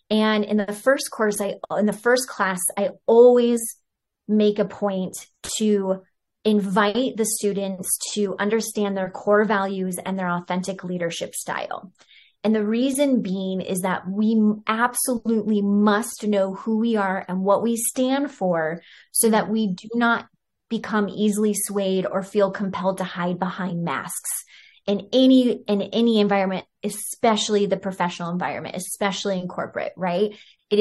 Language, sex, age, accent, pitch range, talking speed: English, female, 30-49, American, 185-215 Hz, 150 wpm